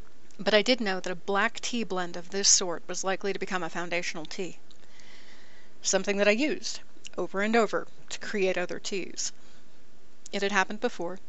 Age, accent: 30-49, American